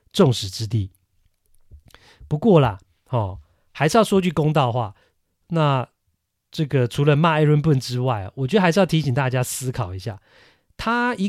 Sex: male